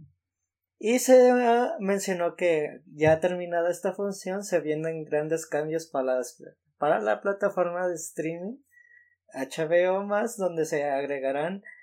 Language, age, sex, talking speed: Spanish, 20-39, male, 110 wpm